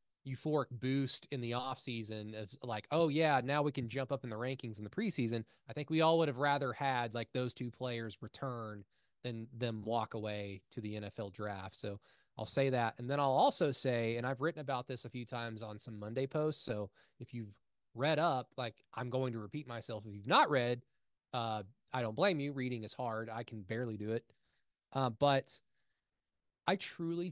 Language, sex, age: English, male, 20-39